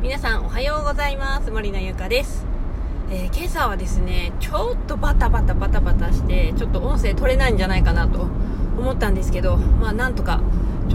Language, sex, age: Japanese, female, 20-39